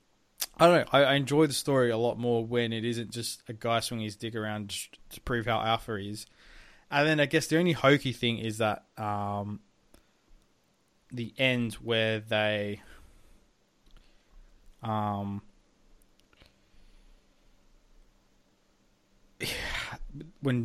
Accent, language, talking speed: Australian, English, 125 wpm